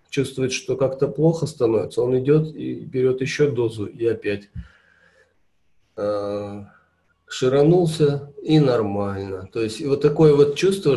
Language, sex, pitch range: Russian, male, 115-160 Hz